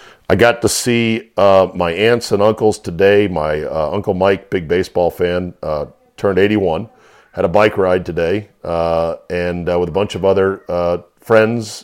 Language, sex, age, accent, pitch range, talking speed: English, male, 50-69, American, 90-110 Hz, 175 wpm